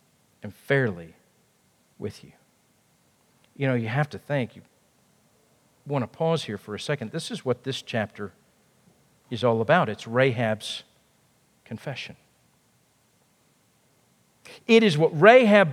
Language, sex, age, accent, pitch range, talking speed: English, male, 50-69, American, 140-215 Hz, 125 wpm